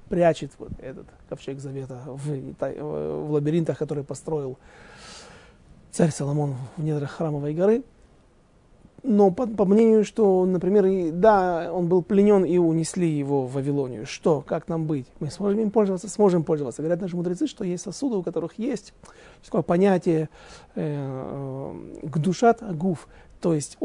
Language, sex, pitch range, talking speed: Russian, male, 150-205 Hz, 150 wpm